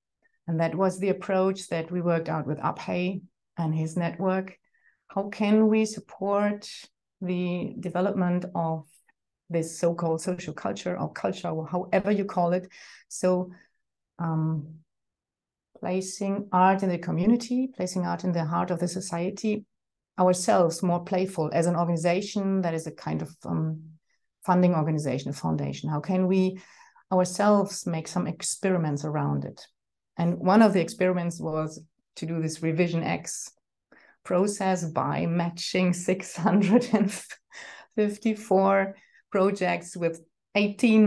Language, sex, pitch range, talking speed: German, female, 165-195 Hz, 130 wpm